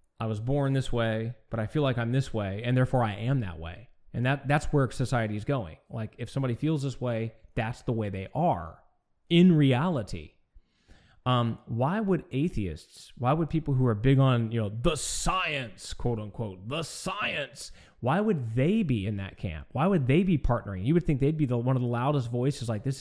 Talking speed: 215 wpm